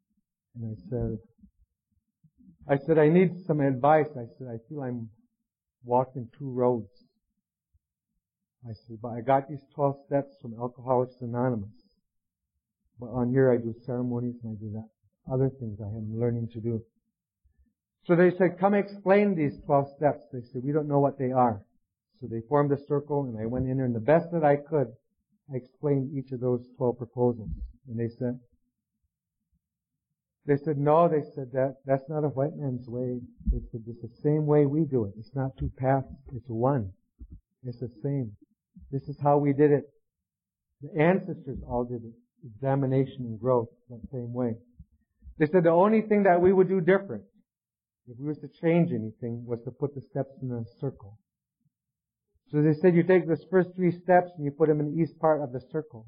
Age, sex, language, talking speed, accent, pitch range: 50-69, male, English, 190 wpm, American, 120-150 Hz